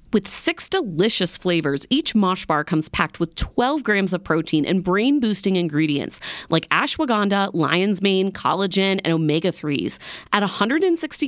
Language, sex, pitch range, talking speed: English, female, 160-210 Hz, 150 wpm